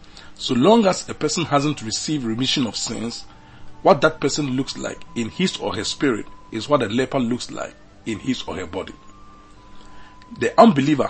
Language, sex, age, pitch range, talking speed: English, male, 40-59, 100-145 Hz, 180 wpm